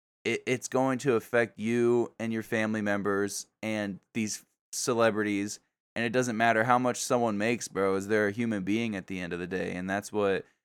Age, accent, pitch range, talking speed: 10-29, American, 100-115 Hz, 195 wpm